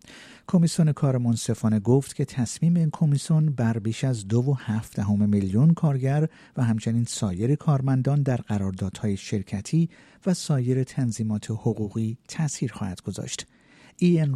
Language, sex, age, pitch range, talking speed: Persian, male, 50-69, 110-150 Hz, 135 wpm